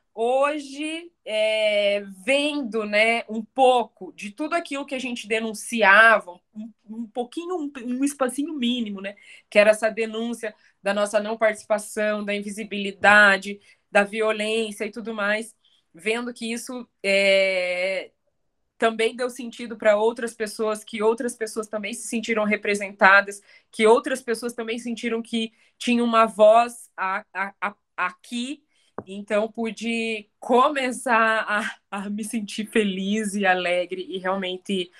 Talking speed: 135 wpm